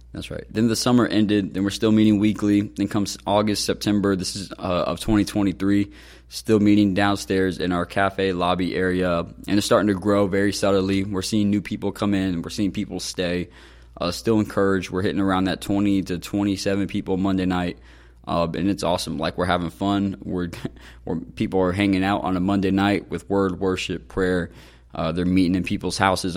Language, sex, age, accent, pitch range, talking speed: English, male, 20-39, American, 85-100 Hz, 195 wpm